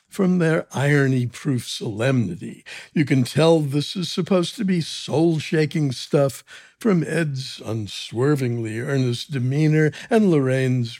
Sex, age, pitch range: male, 60-79, 125-165 Hz